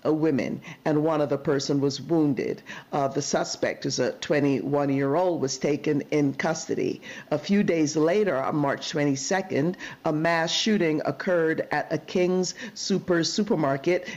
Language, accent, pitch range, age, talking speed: English, American, 145-170 Hz, 50-69, 140 wpm